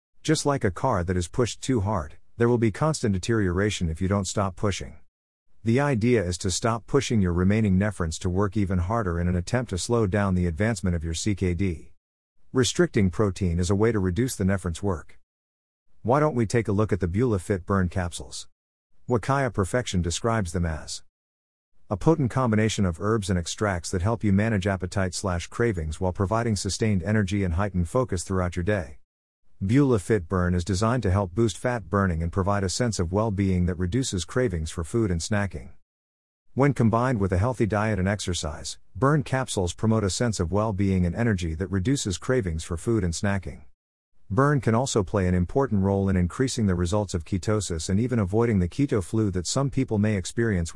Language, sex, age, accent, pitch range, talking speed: English, male, 50-69, American, 90-115 Hz, 195 wpm